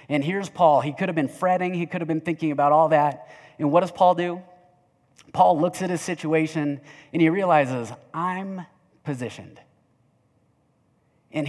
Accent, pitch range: American, 135-175 Hz